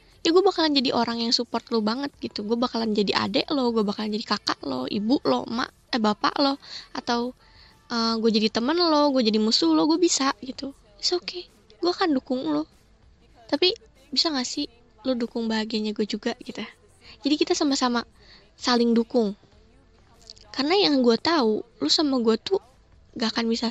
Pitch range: 220-285 Hz